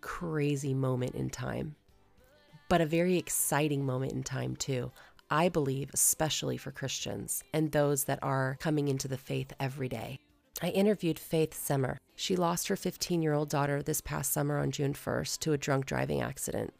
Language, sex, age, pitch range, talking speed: English, female, 30-49, 140-165 Hz, 175 wpm